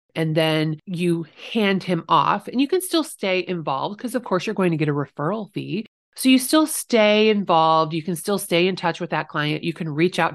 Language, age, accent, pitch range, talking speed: English, 30-49, American, 155-185 Hz, 230 wpm